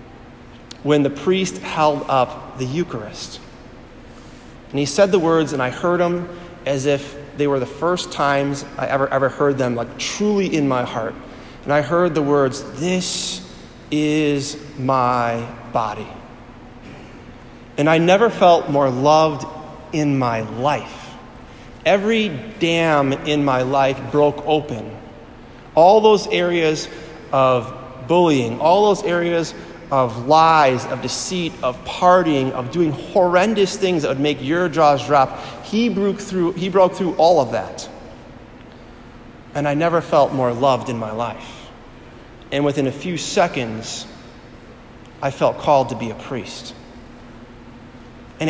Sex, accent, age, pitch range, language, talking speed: male, American, 30-49, 120-160 Hz, English, 135 wpm